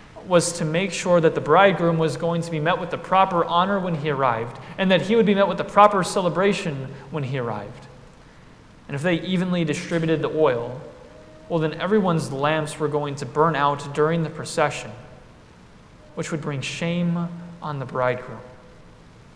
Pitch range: 145-180 Hz